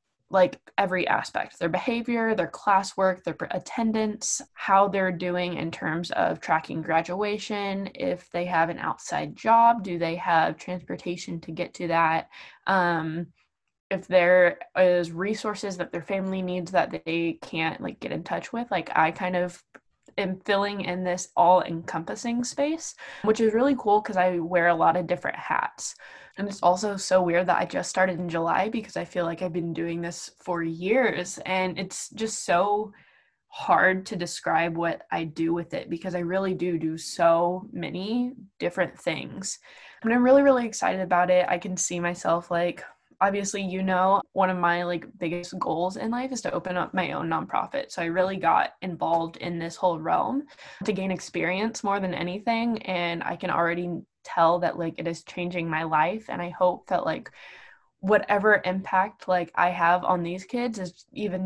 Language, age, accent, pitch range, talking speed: English, 10-29, American, 170-200 Hz, 180 wpm